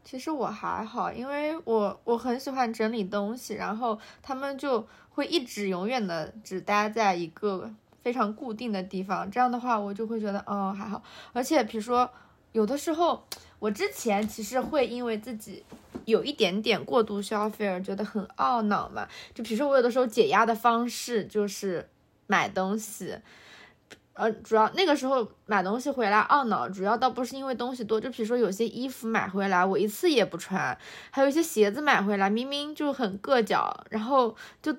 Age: 20-39